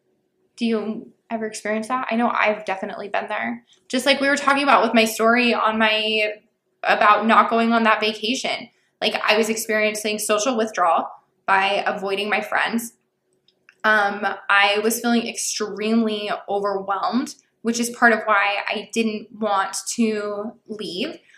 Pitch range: 205-230 Hz